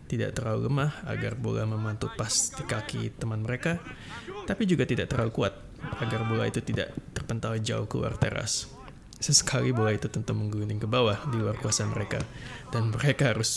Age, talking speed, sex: 20-39, 170 wpm, male